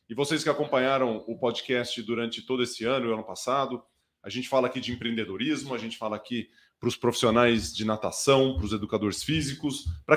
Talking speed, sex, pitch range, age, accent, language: 195 wpm, male, 110-135 Hz, 20-39, Brazilian, Portuguese